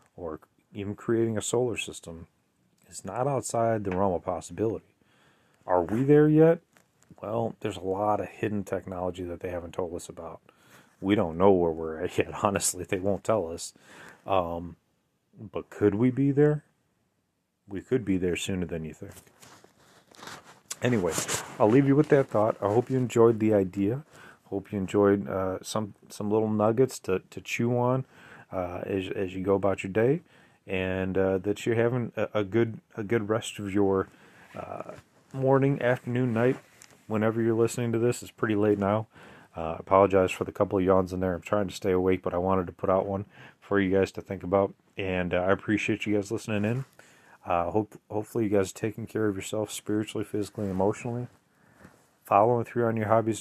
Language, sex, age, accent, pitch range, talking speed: English, male, 30-49, American, 95-115 Hz, 190 wpm